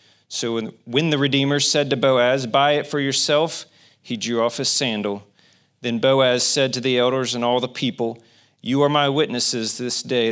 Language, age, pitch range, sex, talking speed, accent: English, 40-59, 110-135 Hz, male, 185 wpm, American